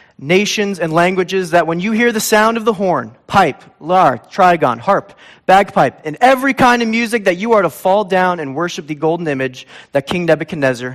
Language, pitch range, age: English, 150-205 Hz, 30-49